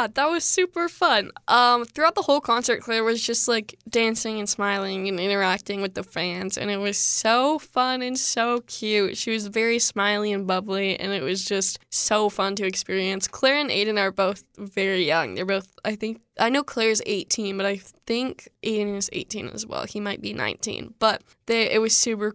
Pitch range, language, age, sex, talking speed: 200-240 Hz, English, 10-29, female, 200 wpm